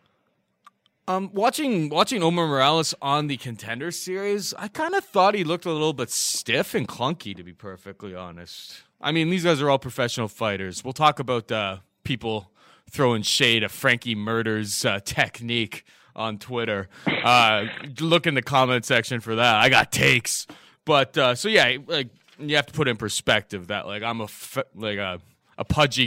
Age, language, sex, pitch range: 20-39, English, male, 110-160 Hz